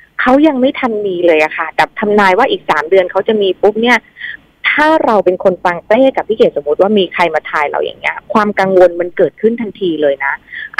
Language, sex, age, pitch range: Thai, female, 20-39, 170-220 Hz